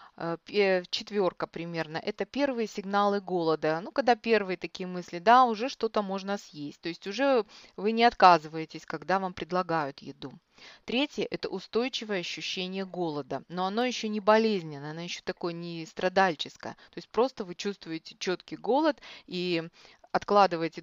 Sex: female